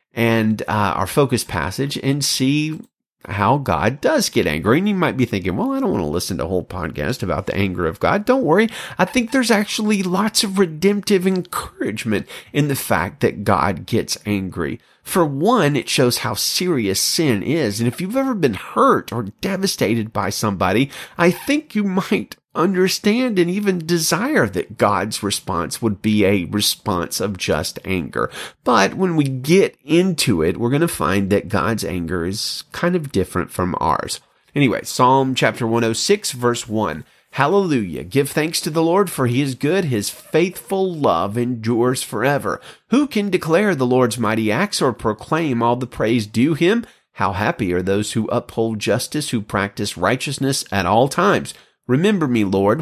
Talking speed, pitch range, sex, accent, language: 175 wpm, 105-175 Hz, male, American, English